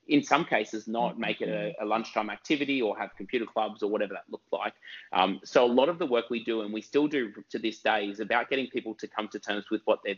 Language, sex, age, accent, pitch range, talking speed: English, male, 20-39, Australian, 105-120 Hz, 270 wpm